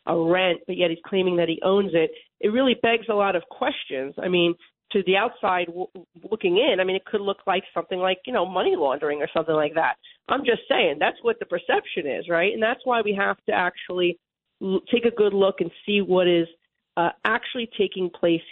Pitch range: 175-210 Hz